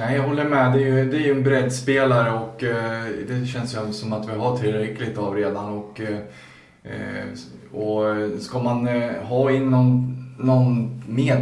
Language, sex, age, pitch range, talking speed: Swedish, male, 20-39, 105-125 Hz, 190 wpm